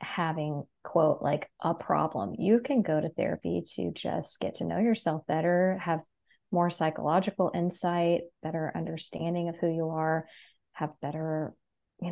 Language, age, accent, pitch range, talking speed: English, 20-39, American, 155-185 Hz, 150 wpm